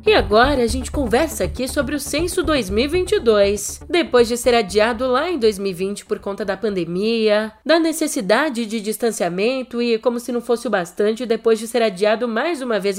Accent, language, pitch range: Brazilian, Portuguese, 200-260 Hz